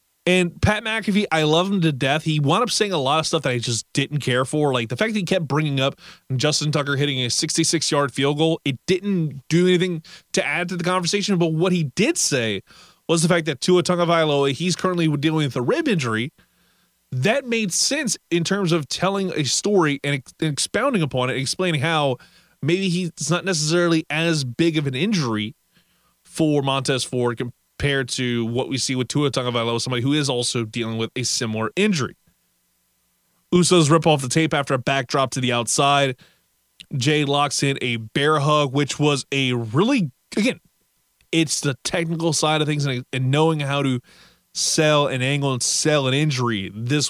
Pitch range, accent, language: 130-170 Hz, American, English